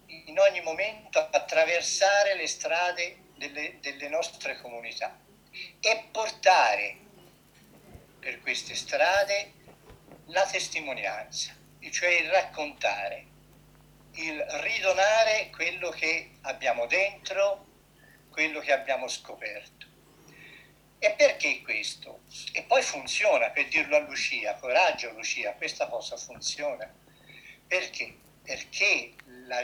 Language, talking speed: Italian, 95 wpm